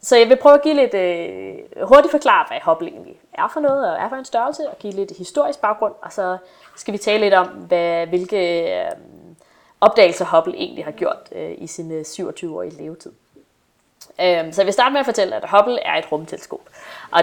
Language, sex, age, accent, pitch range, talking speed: Danish, female, 20-39, native, 175-230 Hz, 190 wpm